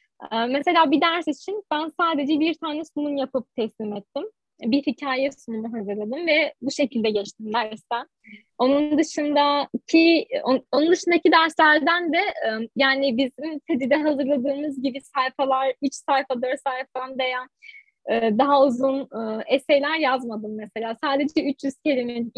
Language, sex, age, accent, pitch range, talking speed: Turkish, female, 10-29, native, 240-310 Hz, 120 wpm